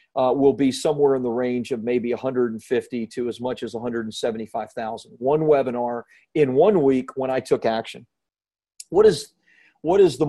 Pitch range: 135-210 Hz